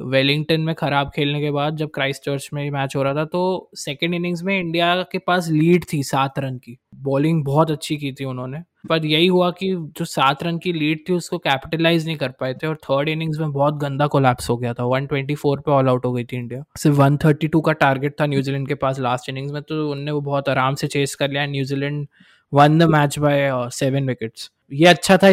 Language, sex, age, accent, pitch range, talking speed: Hindi, male, 20-39, native, 135-155 Hz, 225 wpm